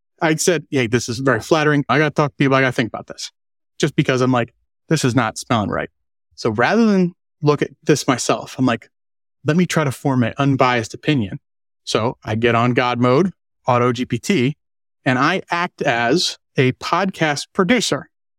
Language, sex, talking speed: English, male, 195 wpm